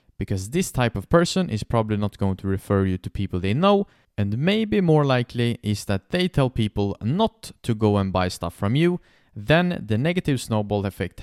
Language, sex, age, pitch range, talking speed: English, male, 30-49, 100-155 Hz, 205 wpm